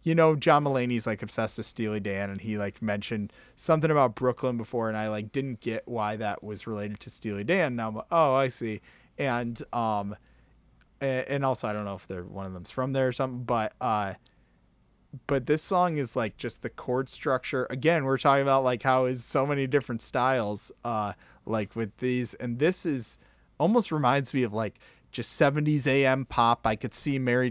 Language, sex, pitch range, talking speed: English, male, 110-135 Hz, 200 wpm